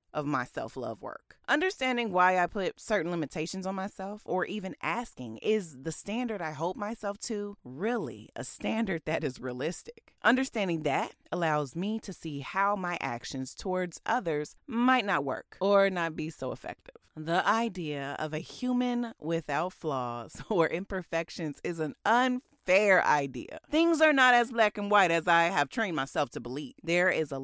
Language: English